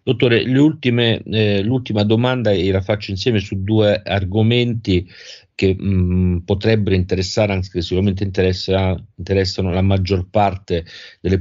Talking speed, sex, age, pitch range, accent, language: 130 wpm, male, 50-69, 95-110 Hz, native, Italian